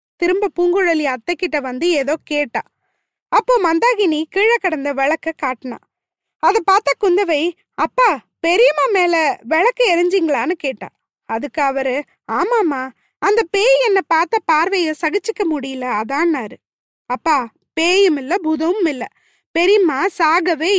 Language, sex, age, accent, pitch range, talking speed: Tamil, female, 20-39, native, 285-390 Hz, 65 wpm